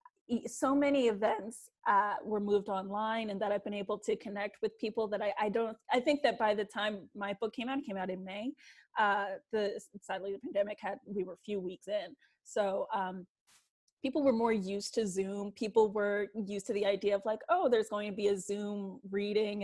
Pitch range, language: 200-250 Hz, English